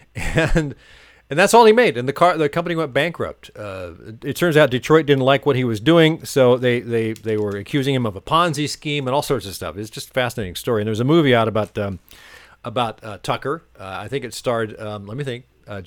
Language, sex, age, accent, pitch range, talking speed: English, male, 40-59, American, 115-155 Hz, 245 wpm